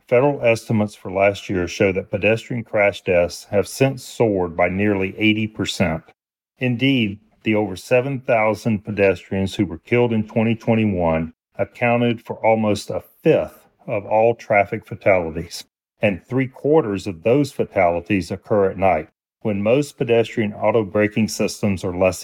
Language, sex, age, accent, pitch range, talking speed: English, male, 40-59, American, 100-120 Hz, 140 wpm